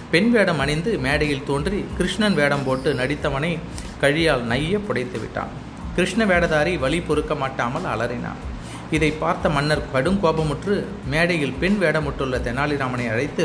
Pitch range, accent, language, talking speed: 130-170 Hz, native, Tamil, 125 wpm